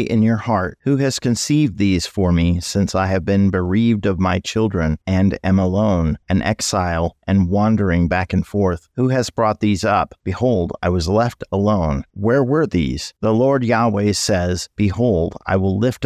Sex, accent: male, American